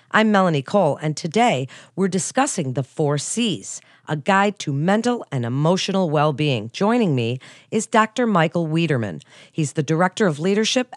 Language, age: English, 40-59